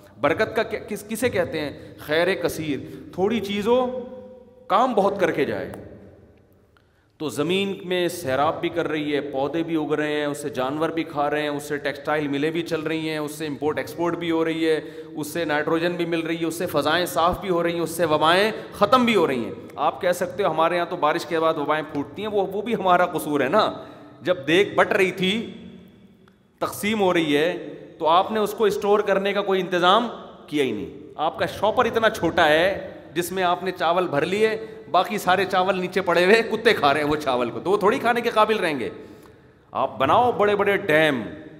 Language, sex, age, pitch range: Urdu, male, 30-49, 150-195 Hz